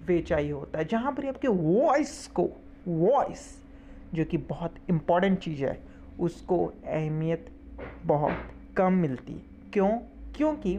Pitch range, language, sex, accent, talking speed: 150-230 Hz, English, male, Indian, 120 wpm